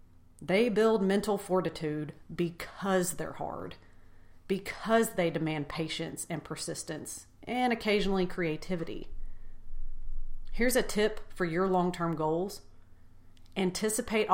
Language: English